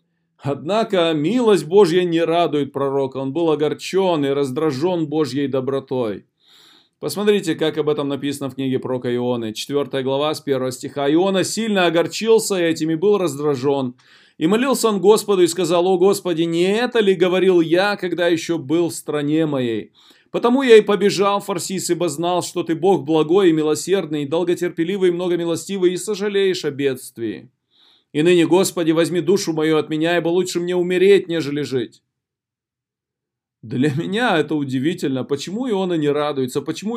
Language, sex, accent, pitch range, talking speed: Russian, male, native, 150-185 Hz, 160 wpm